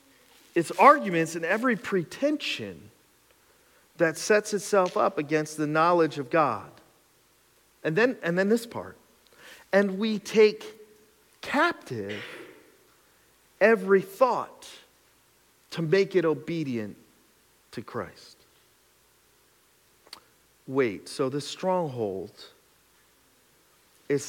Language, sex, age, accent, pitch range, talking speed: English, male, 40-59, American, 180-245 Hz, 90 wpm